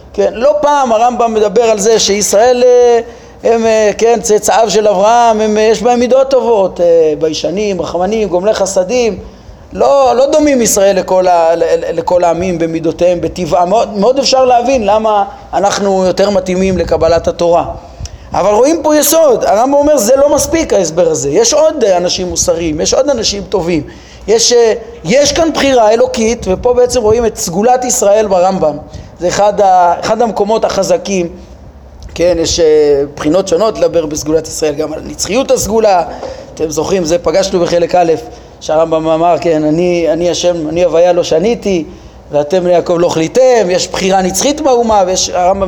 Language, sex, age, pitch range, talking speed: Hebrew, male, 30-49, 175-255 Hz, 150 wpm